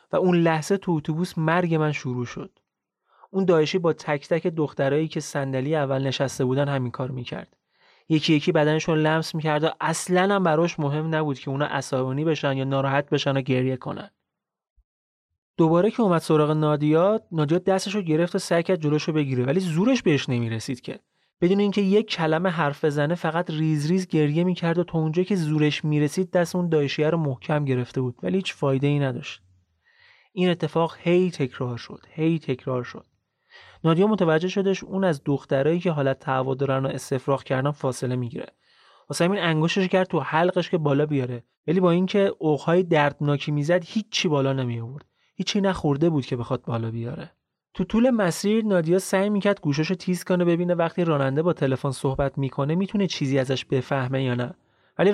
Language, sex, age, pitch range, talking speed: Persian, male, 30-49, 140-180 Hz, 175 wpm